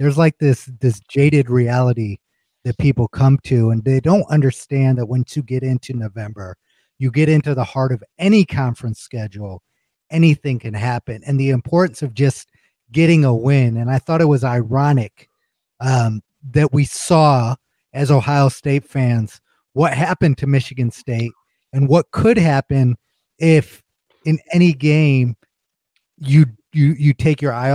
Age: 30-49